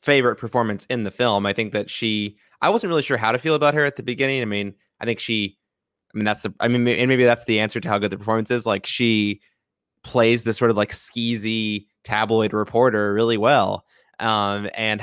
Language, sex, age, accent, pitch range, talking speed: English, male, 20-39, American, 100-115 Hz, 230 wpm